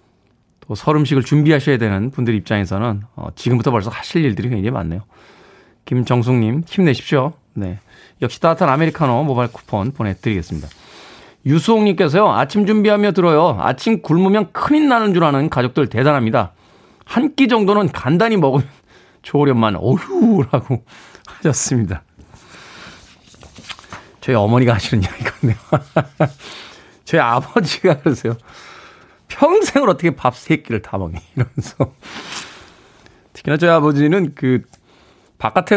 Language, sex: Korean, male